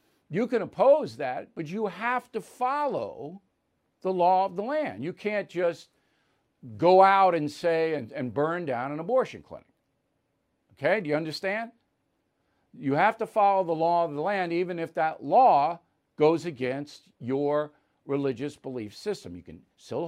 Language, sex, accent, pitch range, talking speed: English, male, American, 150-215 Hz, 160 wpm